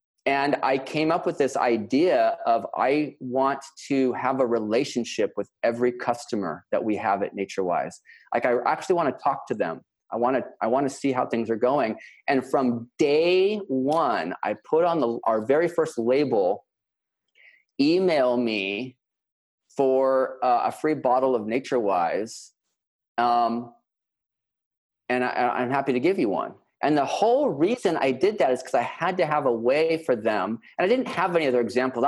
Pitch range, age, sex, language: 120-140 Hz, 30-49, male, English